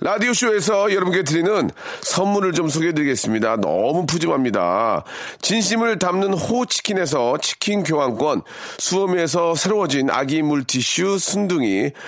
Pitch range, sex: 155-200 Hz, male